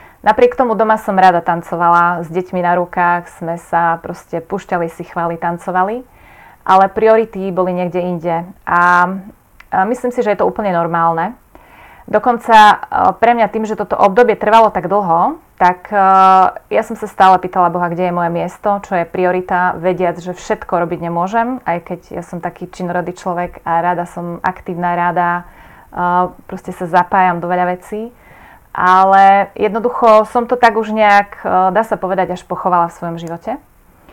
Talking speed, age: 160 wpm, 30-49